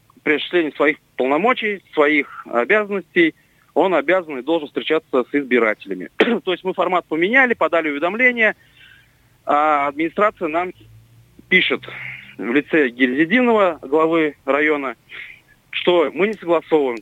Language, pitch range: Russian, 140-185 Hz